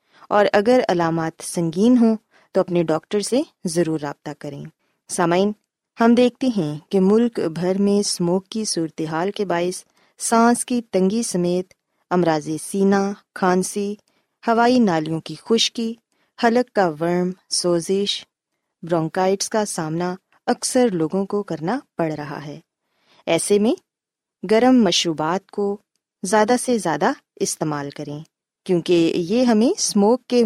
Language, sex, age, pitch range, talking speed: Urdu, female, 20-39, 170-230 Hz, 130 wpm